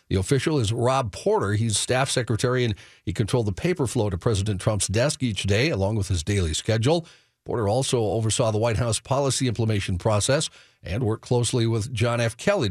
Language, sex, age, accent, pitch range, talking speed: English, male, 50-69, American, 100-130 Hz, 195 wpm